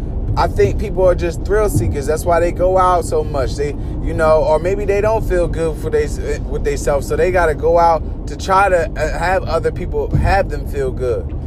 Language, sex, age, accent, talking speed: English, male, 20-39, American, 225 wpm